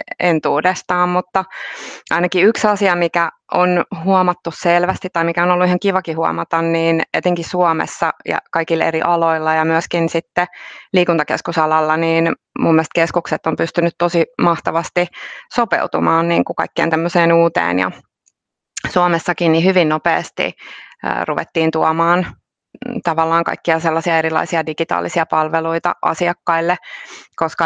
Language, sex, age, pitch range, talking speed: Finnish, female, 20-39, 165-180 Hz, 115 wpm